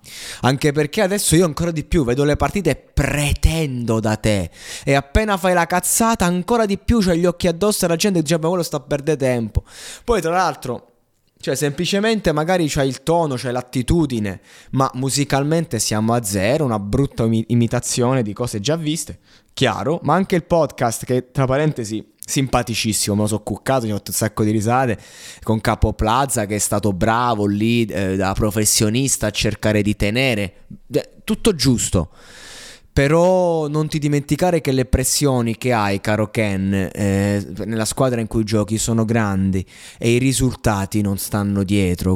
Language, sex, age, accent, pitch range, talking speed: Italian, male, 20-39, native, 105-140 Hz, 170 wpm